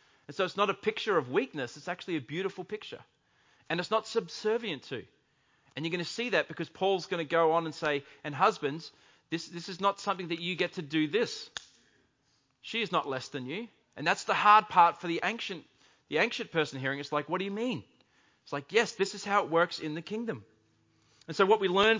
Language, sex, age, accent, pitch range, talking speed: English, male, 30-49, Australian, 155-200 Hz, 230 wpm